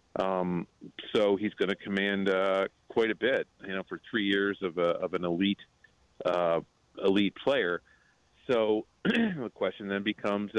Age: 40-59